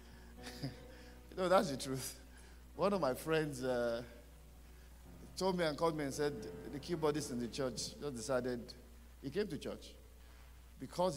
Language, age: English, 50-69